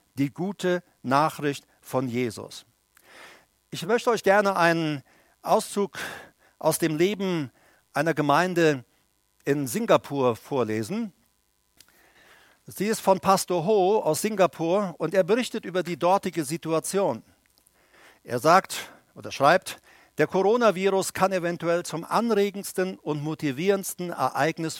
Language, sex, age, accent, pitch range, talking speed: German, male, 50-69, German, 140-190 Hz, 110 wpm